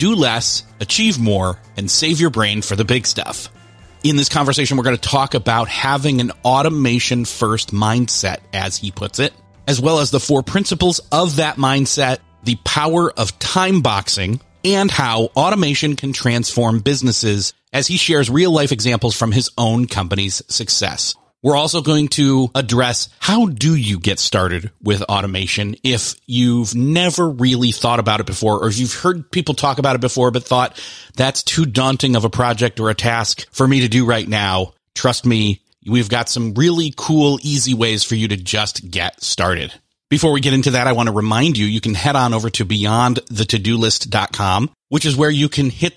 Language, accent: English, American